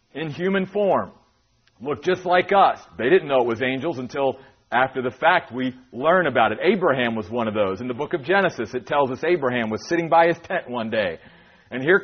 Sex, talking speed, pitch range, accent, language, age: male, 220 wpm, 130-190 Hz, American, English, 40-59